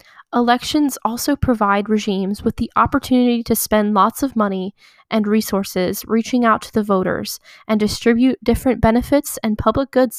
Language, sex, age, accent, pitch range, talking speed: English, female, 10-29, American, 210-250 Hz, 155 wpm